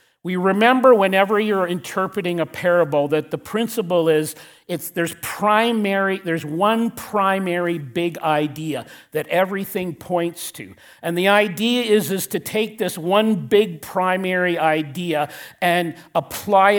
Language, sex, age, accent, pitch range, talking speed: English, male, 50-69, American, 155-205 Hz, 130 wpm